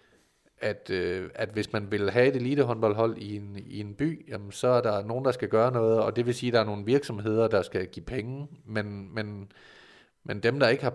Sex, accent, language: male, native, Danish